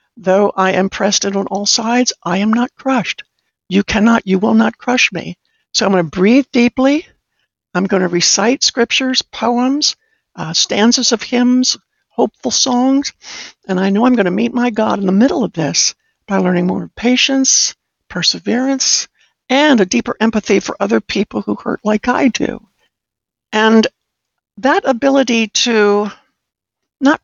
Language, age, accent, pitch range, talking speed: English, 60-79, American, 195-265 Hz, 160 wpm